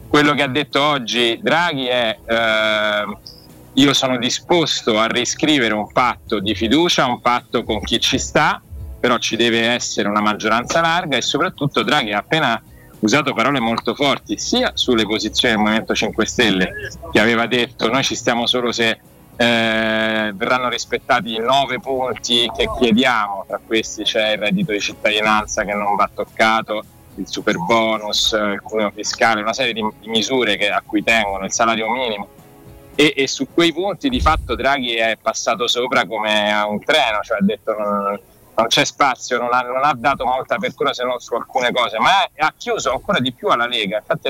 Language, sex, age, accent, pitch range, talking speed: Italian, male, 30-49, native, 110-125 Hz, 180 wpm